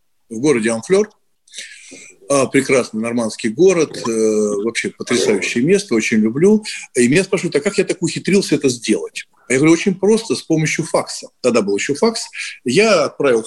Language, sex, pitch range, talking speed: Russian, male, 130-215 Hz, 150 wpm